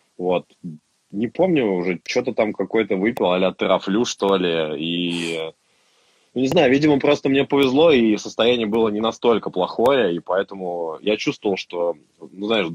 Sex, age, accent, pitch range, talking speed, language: male, 20-39, native, 85-105 Hz, 150 wpm, Russian